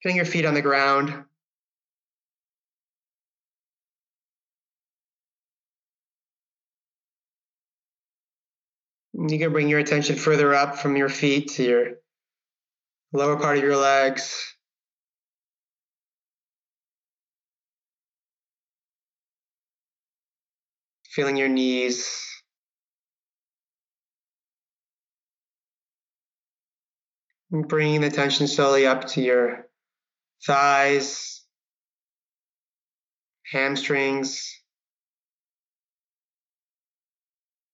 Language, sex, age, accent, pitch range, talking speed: English, male, 30-49, American, 135-155 Hz, 55 wpm